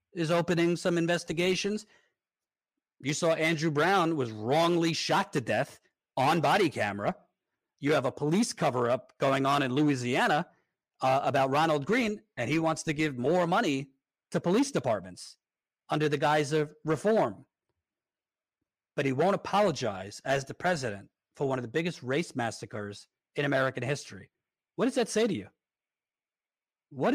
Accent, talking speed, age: American, 150 wpm, 40-59